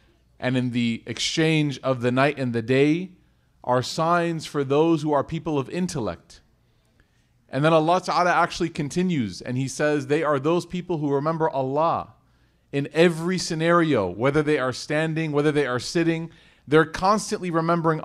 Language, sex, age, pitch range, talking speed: English, male, 30-49, 140-175 Hz, 165 wpm